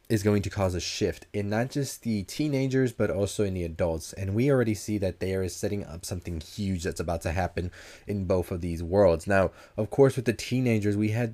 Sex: male